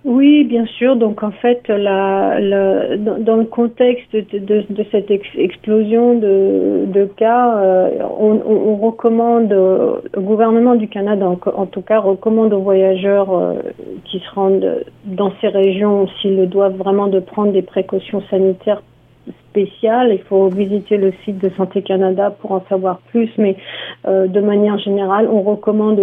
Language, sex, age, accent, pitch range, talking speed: French, female, 50-69, French, 190-210 Hz, 165 wpm